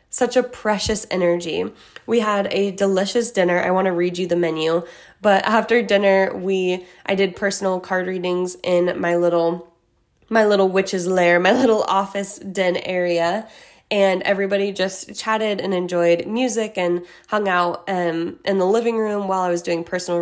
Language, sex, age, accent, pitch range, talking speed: English, female, 20-39, American, 180-225 Hz, 170 wpm